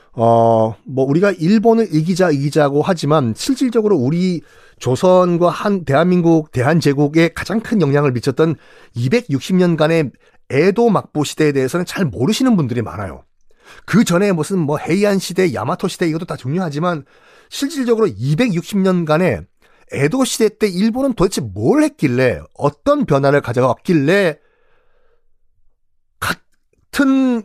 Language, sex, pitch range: Korean, male, 130-195 Hz